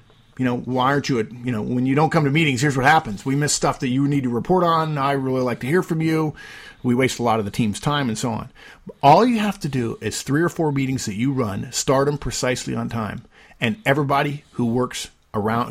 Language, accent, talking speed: English, American, 255 wpm